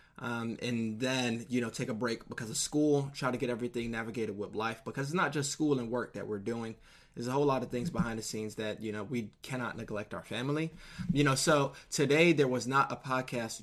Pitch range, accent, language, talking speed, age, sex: 125-155 Hz, American, English, 240 wpm, 20-39, male